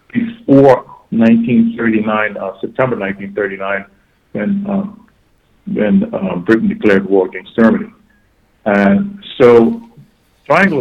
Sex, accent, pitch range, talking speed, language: male, American, 100-150 Hz, 95 wpm, English